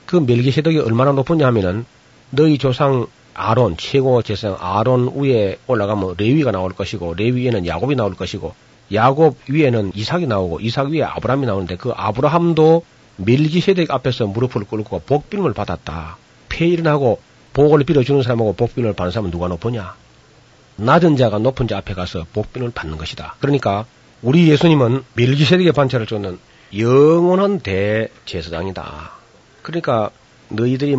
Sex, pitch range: male, 105-135 Hz